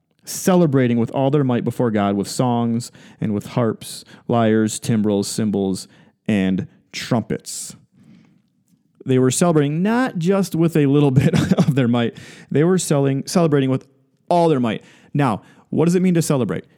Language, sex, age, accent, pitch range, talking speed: English, male, 30-49, American, 120-155 Hz, 155 wpm